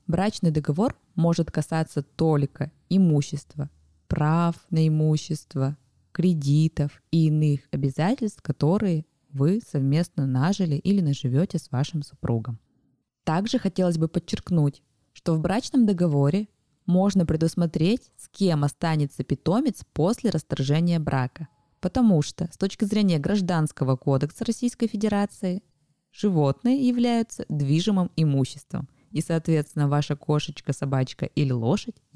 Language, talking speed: Russian, 110 wpm